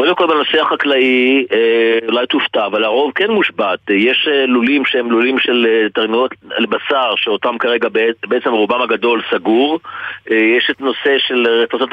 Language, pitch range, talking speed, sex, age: Hebrew, 115-140 Hz, 145 wpm, male, 40-59